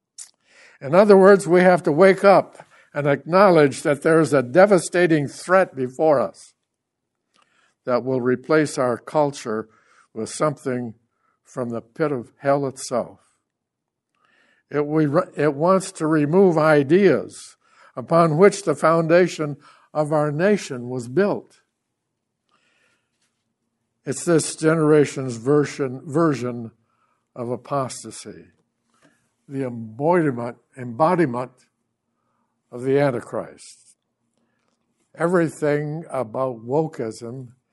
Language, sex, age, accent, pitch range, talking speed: English, male, 60-79, American, 125-165 Hz, 100 wpm